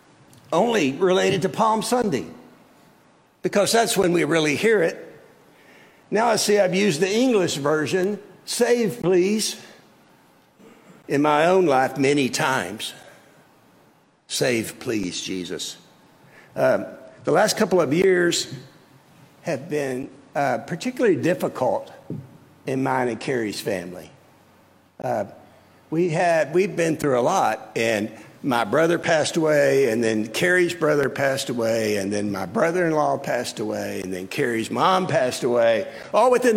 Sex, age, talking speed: male, 60-79, 130 wpm